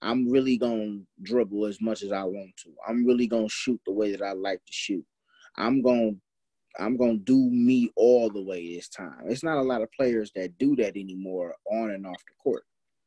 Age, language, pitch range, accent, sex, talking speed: 20-39, English, 100-125 Hz, American, male, 220 wpm